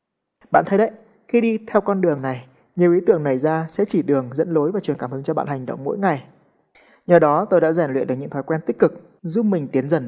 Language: Vietnamese